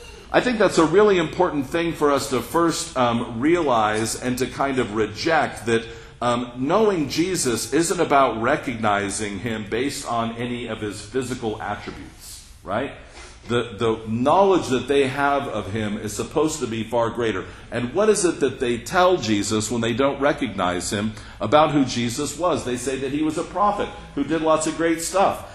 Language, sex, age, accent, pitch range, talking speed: English, male, 50-69, American, 110-165 Hz, 185 wpm